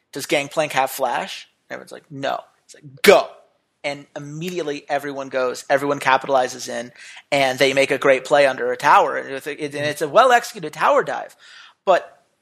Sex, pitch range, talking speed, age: male, 145-190 Hz, 160 wpm, 30-49